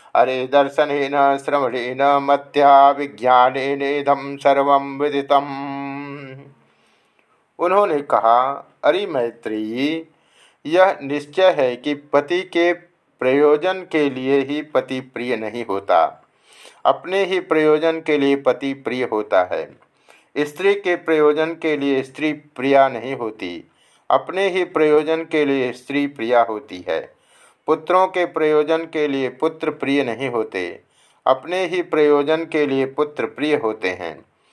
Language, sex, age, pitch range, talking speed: Hindi, male, 50-69, 135-160 Hz, 120 wpm